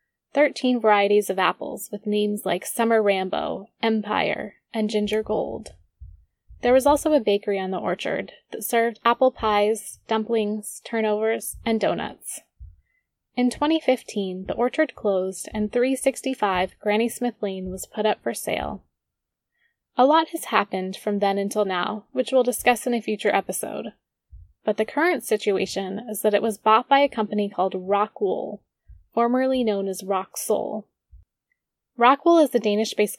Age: 20-39